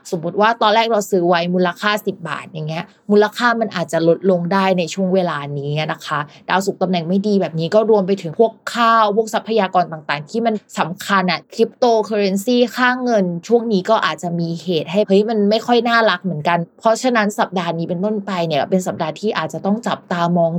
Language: Thai